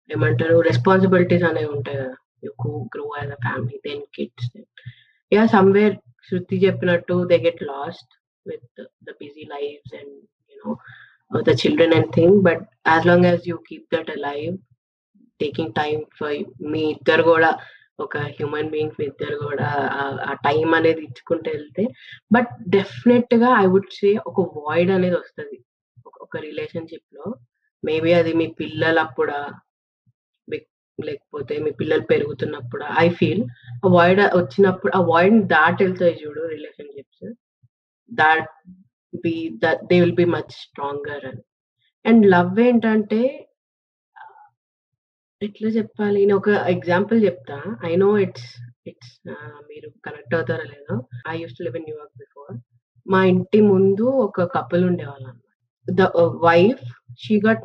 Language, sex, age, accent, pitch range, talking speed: Telugu, female, 20-39, native, 150-210 Hz, 115 wpm